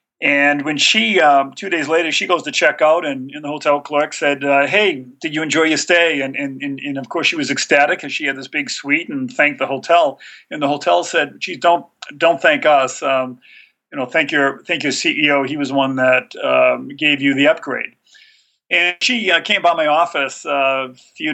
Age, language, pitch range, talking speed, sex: 50-69, English, 140-180 Hz, 225 wpm, male